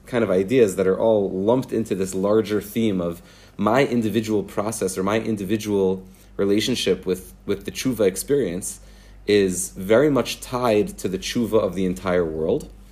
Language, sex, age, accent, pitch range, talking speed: English, male, 30-49, Canadian, 100-115 Hz, 165 wpm